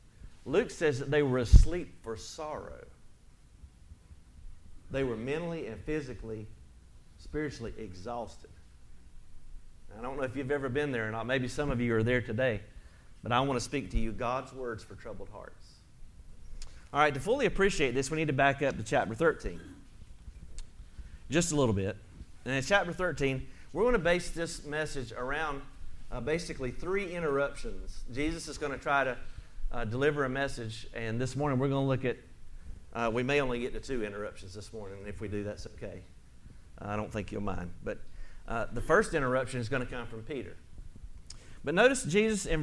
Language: English